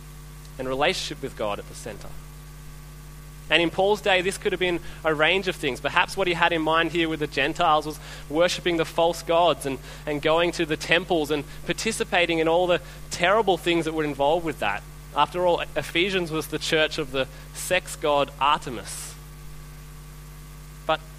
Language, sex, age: English, male, 20-39